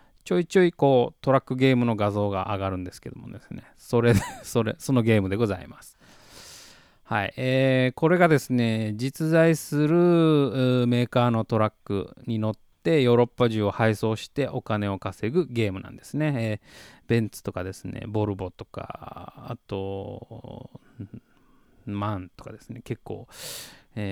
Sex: male